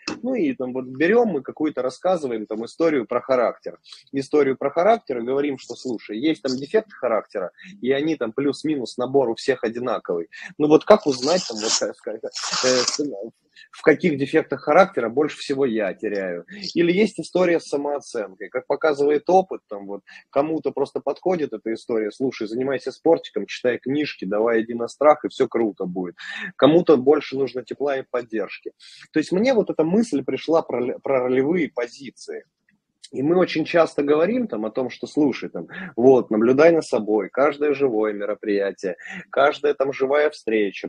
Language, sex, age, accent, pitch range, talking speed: Russian, male, 20-39, native, 120-160 Hz, 160 wpm